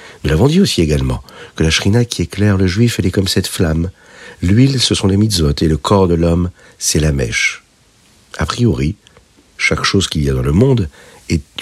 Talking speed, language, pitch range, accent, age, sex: 210 wpm, French, 80-105 Hz, French, 50-69, male